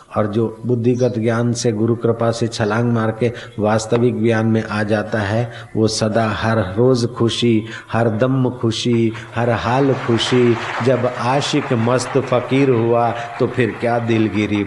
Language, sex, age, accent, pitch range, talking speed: Hindi, male, 50-69, native, 110-125 Hz, 145 wpm